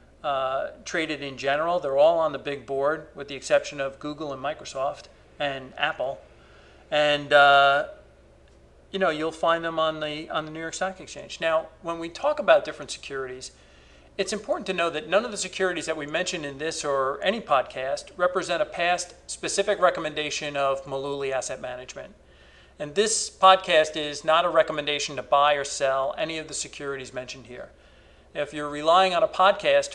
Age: 50-69